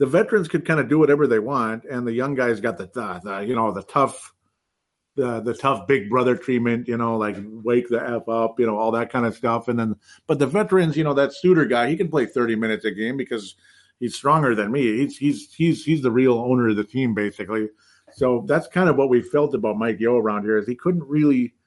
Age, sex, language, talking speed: 50-69, male, English, 250 wpm